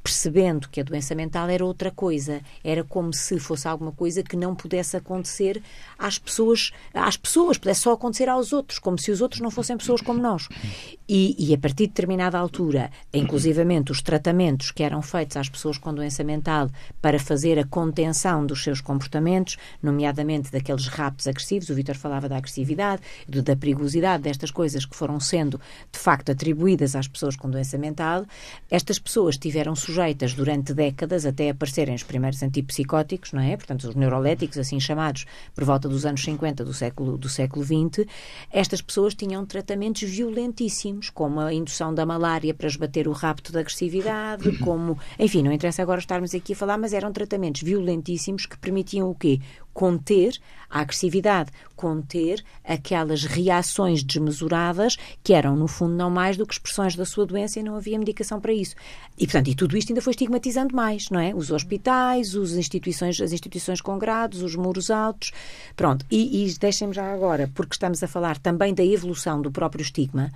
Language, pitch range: Portuguese, 145-195 Hz